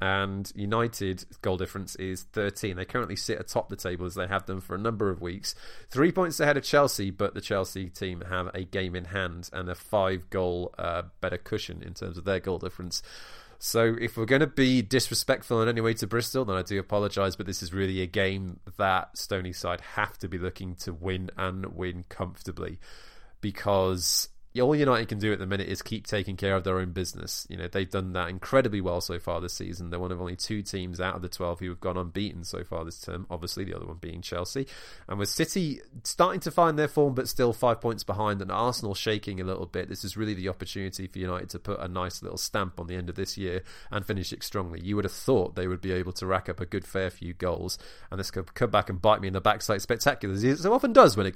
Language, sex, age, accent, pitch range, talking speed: English, male, 20-39, British, 90-105 Hz, 245 wpm